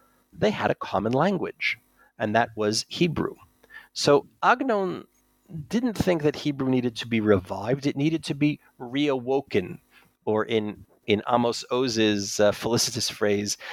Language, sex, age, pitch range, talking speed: English, male, 40-59, 105-140 Hz, 140 wpm